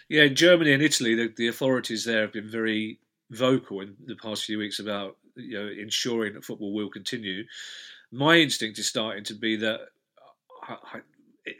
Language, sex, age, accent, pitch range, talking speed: English, male, 40-59, British, 105-130 Hz, 175 wpm